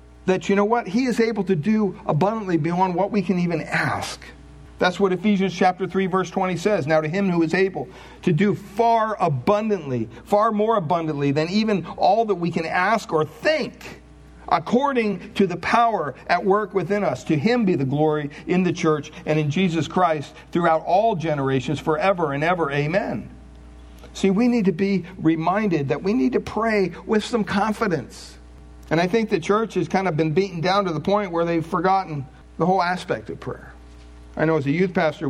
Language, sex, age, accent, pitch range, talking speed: English, male, 50-69, American, 140-195 Hz, 195 wpm